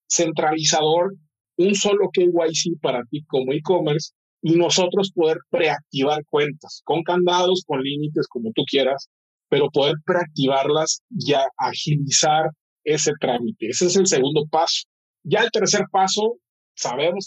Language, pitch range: Spanish, 145-180 Hz